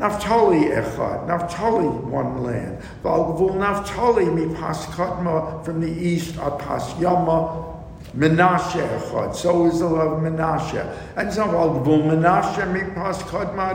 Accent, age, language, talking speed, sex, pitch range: American, 60-79, English, 125 wpm, male, 150-180 Hz